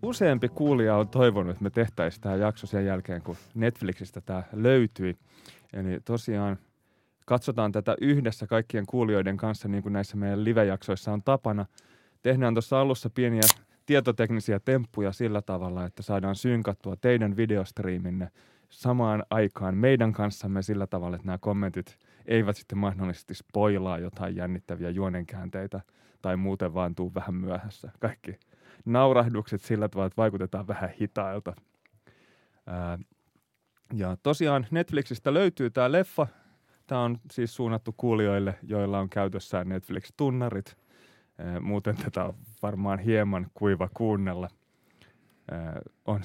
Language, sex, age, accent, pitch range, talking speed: Finnish, male, 30-49, native, 95-120 Hz, 125 wpm